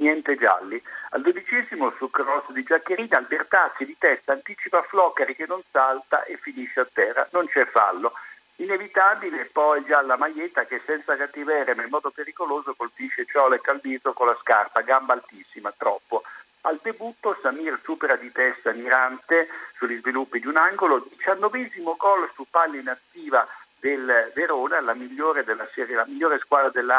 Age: 60-79